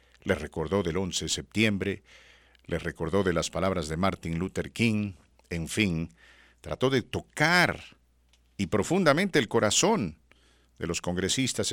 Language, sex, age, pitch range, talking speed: English, male, 50-69, 85-115 Hz, 140 wpm